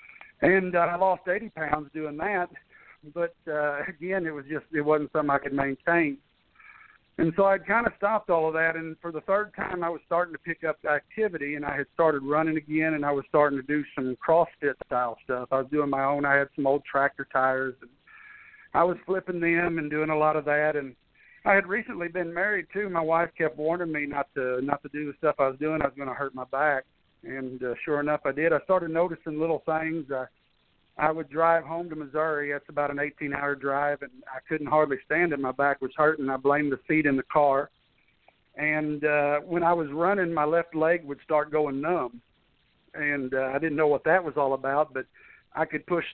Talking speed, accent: 230 wpm, American